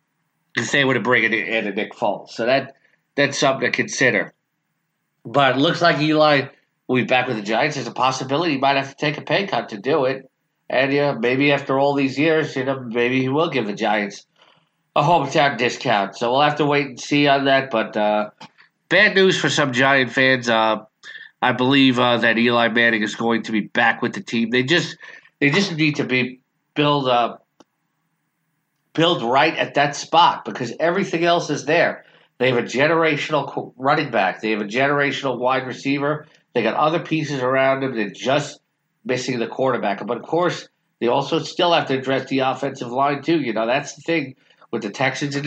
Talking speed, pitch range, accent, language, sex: 205 wpm, 115-150 Hz, American, English, male